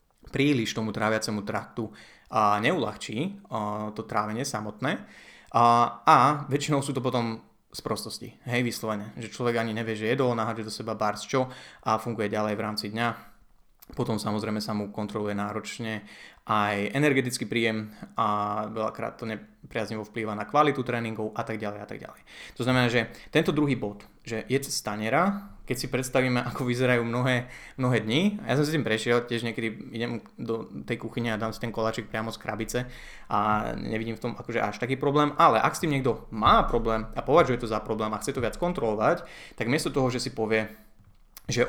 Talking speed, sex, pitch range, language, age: 185 wpm, male, 110-125 Hz, Slovak, 20-39